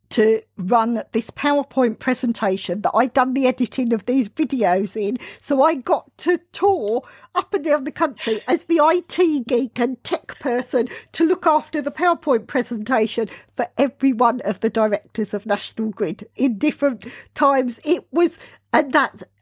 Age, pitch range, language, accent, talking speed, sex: 50-69, 215-270 Hz, English, British, 165 wpm, female